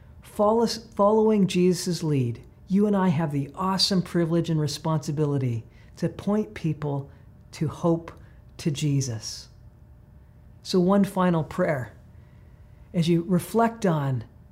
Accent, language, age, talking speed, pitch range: American, English, 40-59, 110 wpm, 120-175 Hz